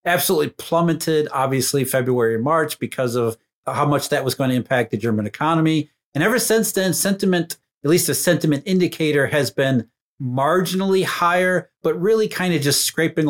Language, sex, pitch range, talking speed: English, male, 140-180 Hz, 165 wpm